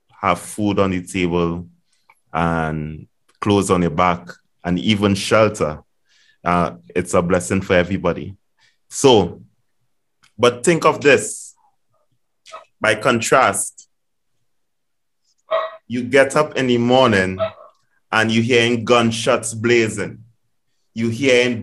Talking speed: 110 wpm